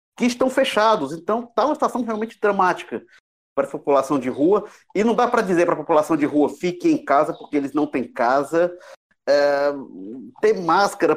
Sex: male